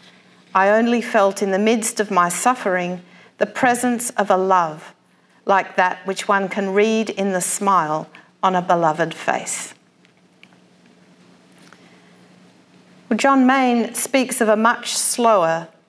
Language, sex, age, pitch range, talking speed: English, female, 50-69, 175-215 Hz, 130 wpm